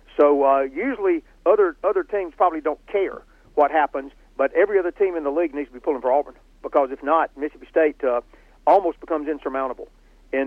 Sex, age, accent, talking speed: male, 50-69, American, 195 wpm